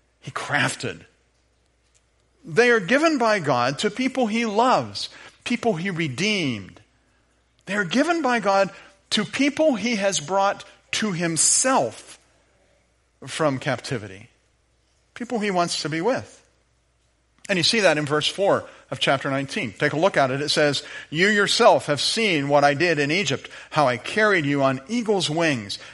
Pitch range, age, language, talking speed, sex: 130-200 Hz, 40-59, English, 155 wpm, male